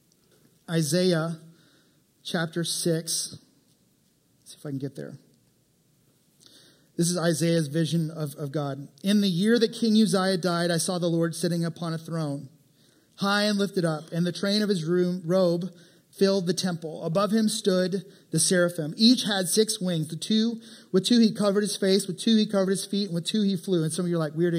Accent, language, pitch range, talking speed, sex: American, English, 170-215 Hz, 190 wpm, male